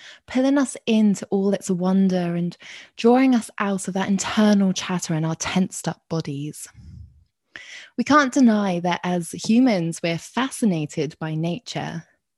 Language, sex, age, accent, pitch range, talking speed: English, female, 20-39, British, 165-215 Hz, 140 wpm